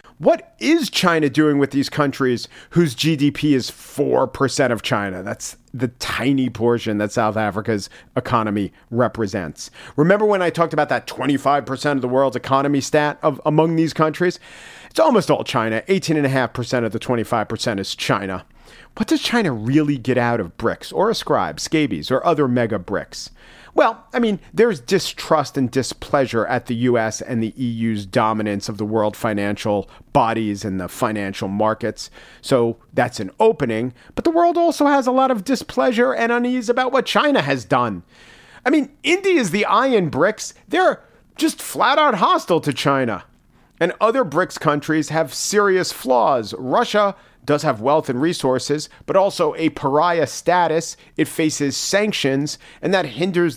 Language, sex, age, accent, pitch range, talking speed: English, male, 40-59, American, 115-170 Hz, 165 wpm